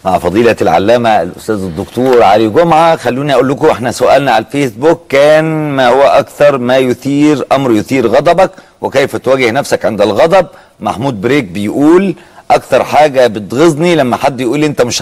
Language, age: Arabic, 40-59